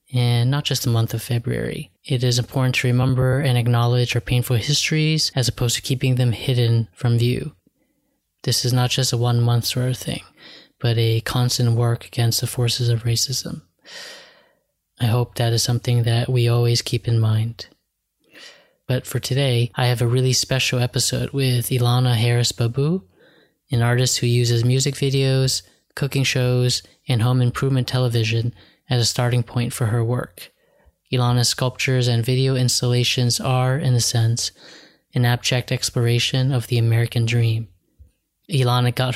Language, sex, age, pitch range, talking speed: English, male, 20-39, 120-130 Hz, 160 wpm